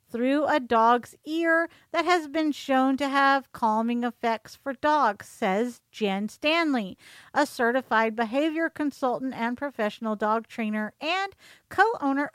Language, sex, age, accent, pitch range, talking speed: English, female, 50-69, American, 230-295 Hz, 130 wpm